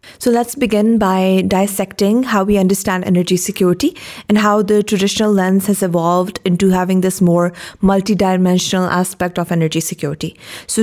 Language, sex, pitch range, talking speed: Urdu, female, 180-210 Hz, 150 wpm